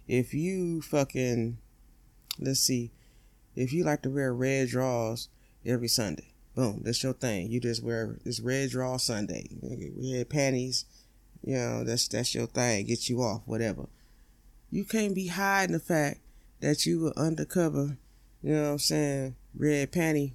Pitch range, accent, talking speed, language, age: 120-155 Hz, American, 160 wpm, English, 20-39